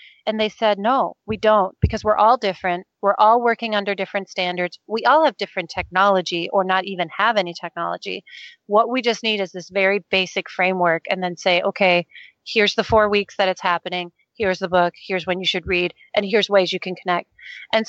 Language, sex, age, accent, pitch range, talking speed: English, female, 30-49, American, 190-225 Hz, 210 wpm